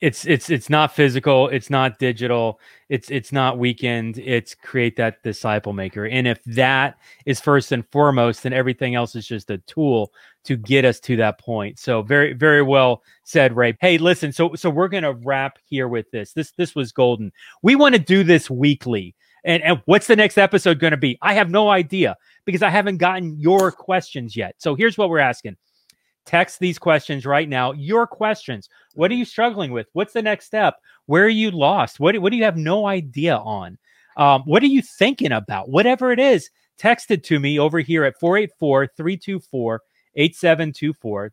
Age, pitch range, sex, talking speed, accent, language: 30-49, 130-195 Hz, male, 195 wpm, American, English